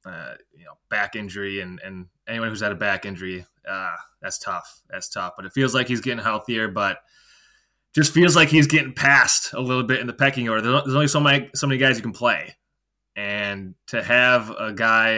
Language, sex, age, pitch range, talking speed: English, male, 20-39, 105-130 Hz, 215 wpm